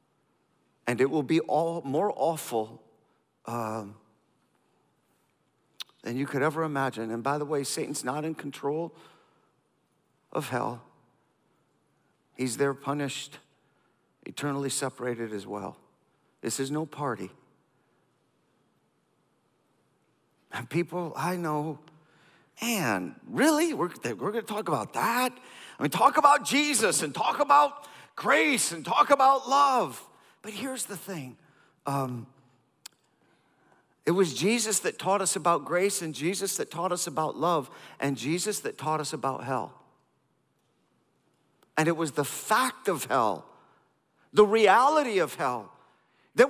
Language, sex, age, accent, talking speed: English, male, 50-69, American, 130 wpm